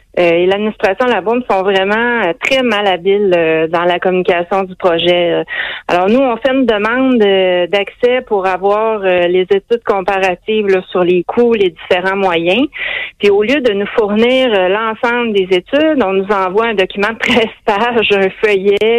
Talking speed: 165 wpm